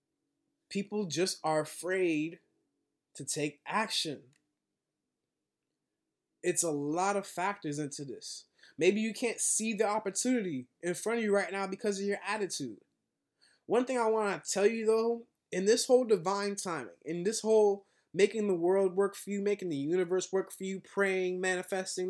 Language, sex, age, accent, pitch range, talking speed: English, male, 20-39, American, 165-210 Hz, 165 wpm